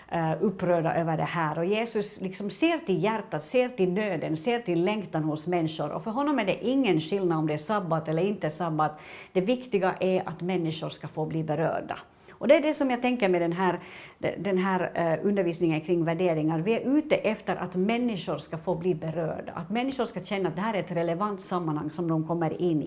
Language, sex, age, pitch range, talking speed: Swedish, female, 60-79, 165-205 Hz, 210 wpm